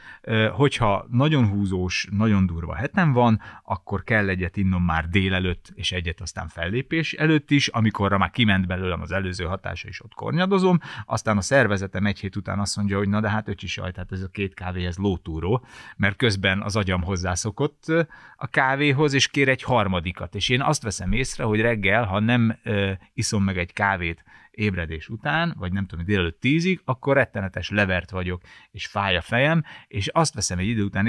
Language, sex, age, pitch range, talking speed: Hungarian, male, 30-49, 95-135 Hz, 180 wpm